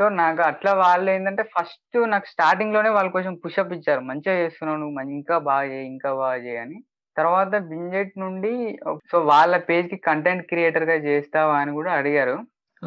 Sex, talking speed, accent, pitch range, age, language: female, 170 wpm, native, 140-175 Hz, 20-39, Telugu